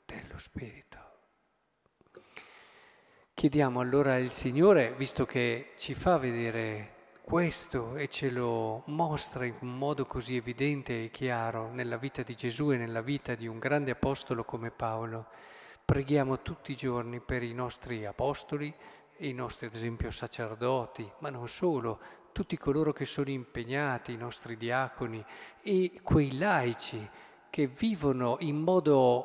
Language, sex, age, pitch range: Italian, male, 40-59, 120-145 Hz